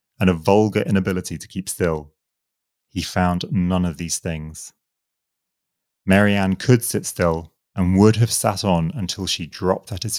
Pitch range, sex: 85-105 Hz, male